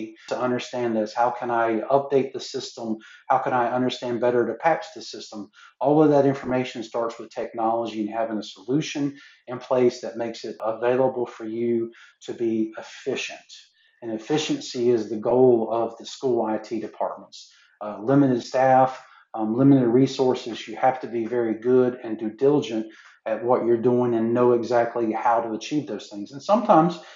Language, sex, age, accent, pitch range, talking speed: German, male, 40-59, American, 115-135 Hz, 175 wpm